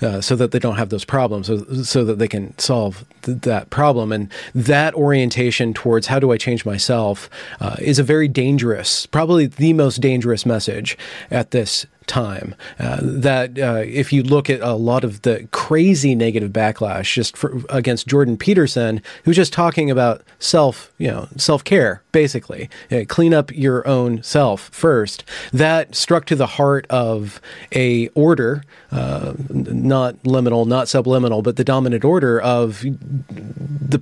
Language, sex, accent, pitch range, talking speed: English, male, American, 115-140 Hz, 170 wpm